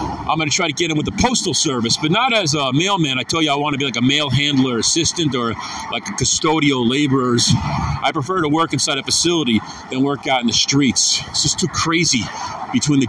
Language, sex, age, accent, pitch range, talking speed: English, male, 40-59, American, 125-155 Hz, 240 wpm